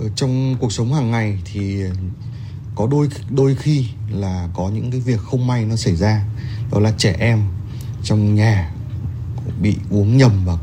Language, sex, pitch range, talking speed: Vietnamese, male, 100-120 Hz, 170 wpm